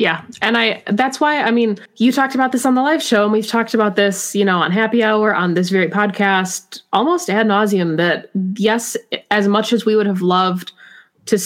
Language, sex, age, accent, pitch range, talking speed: English, female, 20-39, American, 180-215 Hz, 220 wpm